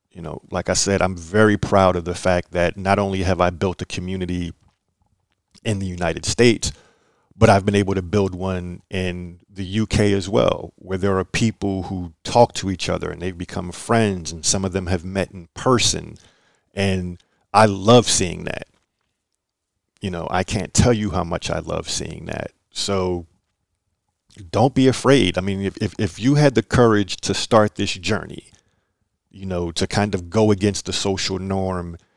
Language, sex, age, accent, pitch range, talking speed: English, male, 40-59, American, 90-105 Hz, 185 wpm